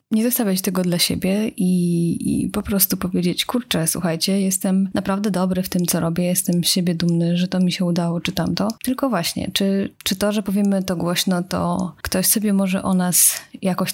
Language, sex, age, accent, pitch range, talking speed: Polish, female, 20-39, native, 175-200 Hz, 200 wpm